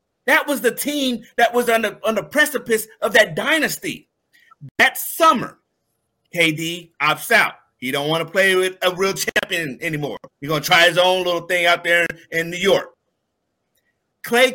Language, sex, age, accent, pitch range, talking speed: English, male, 30-49, American, 175-235 Hz, 175 wpm